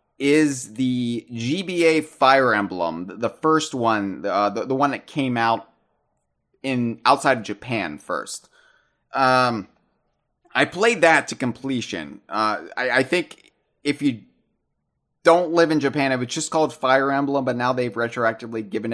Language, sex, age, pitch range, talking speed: English, male, 30-49, 115-150 Hz, 150 wpm